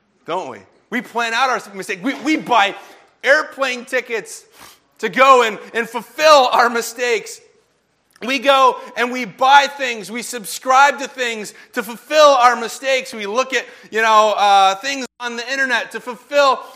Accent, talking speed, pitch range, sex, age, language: American, 160 wpm, 225-285 Hz, male, 30-49, English